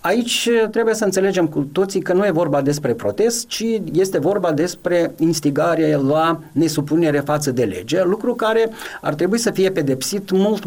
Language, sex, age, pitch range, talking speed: Romanian, male, 40-59, 150-205 Hz, 170 wpm